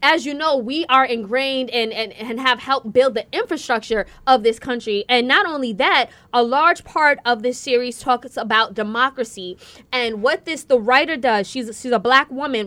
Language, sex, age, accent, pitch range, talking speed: English, female, 20-39, American, 240-295 Hz, 200 wpm